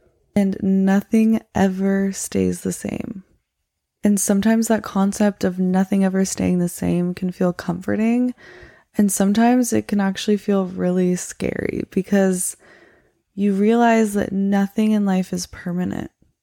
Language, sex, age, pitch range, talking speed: English, female, 20-39, 180-210 Hz, 130 wpm